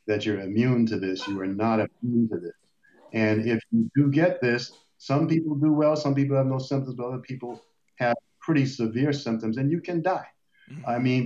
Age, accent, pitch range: 50-69, American, 105-125 Hz